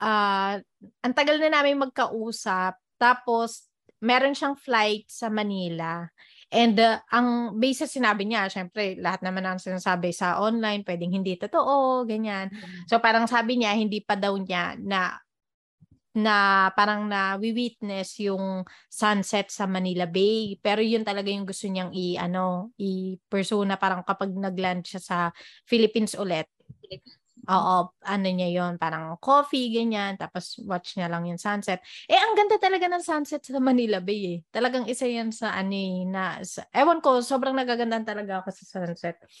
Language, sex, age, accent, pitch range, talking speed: Filipino, female, 20-39, native, 185-235 Hz, 155 wpm